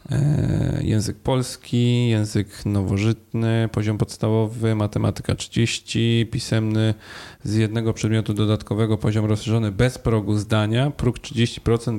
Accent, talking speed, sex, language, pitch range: native, 100 wpm, male, Polish, 105-120 Hz